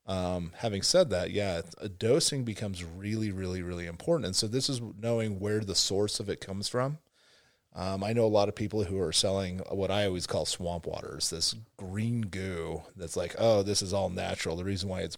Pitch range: 90-105 Hz